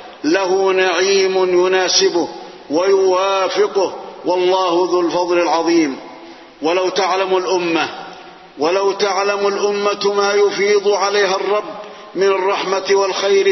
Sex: male